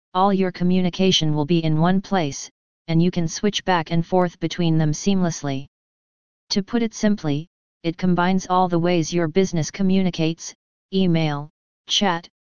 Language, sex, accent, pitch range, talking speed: English, female, American, 165-190 Hz, 155 wpm